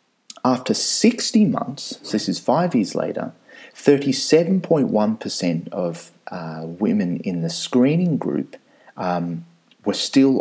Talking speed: 115 wpm